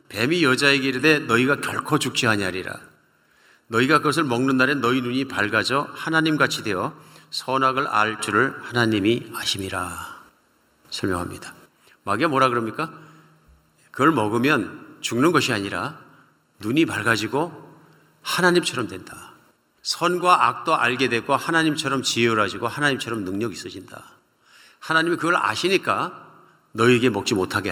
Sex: male